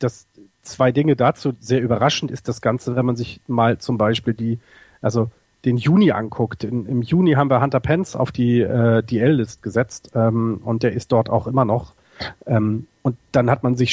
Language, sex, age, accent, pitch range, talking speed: German, male, 40-59, German, 110-130 Hz, 200 wpm